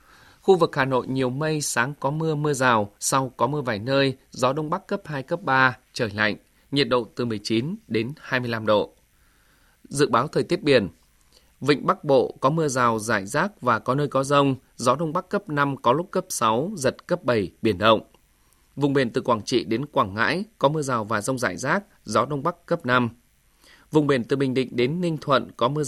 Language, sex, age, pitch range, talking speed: Vietnamese, male, 20-39, 120-155 Hz, 220 wpm